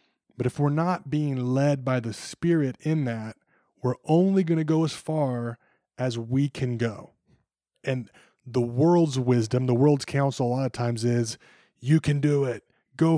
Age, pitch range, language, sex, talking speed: 20-39, 120-155 Hz, English, male, 180 wpm